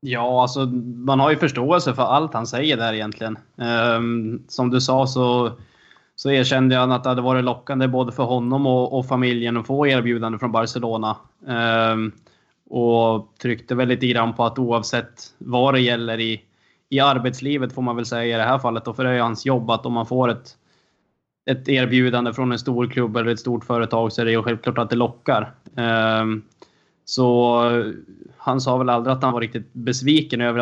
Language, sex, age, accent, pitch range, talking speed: Swedish, male, 20-39, native, 115-125 Hz, 195 wpm